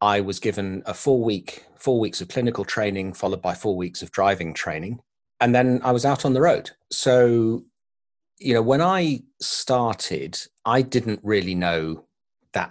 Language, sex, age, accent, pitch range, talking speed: English, male, 40-59, British, 95-125 Hz, 175 wpm